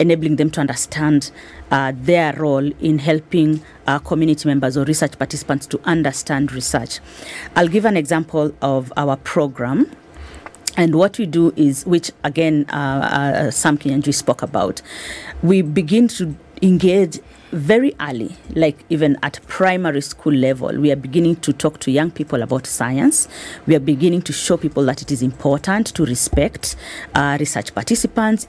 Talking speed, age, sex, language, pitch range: 155 wpm, 30-49, female, English, 140-170 Hz